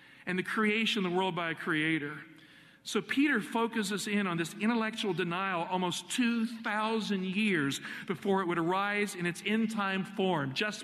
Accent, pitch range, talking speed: American, 170-215 Hz, 160 wpm